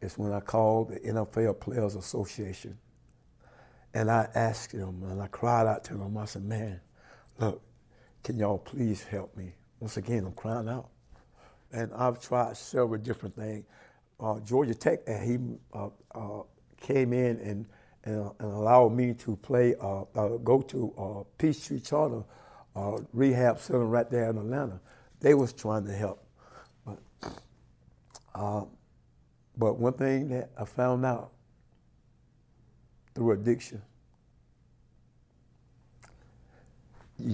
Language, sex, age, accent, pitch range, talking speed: English, male, 60-79, American, 105-120 Hz, 140 wpm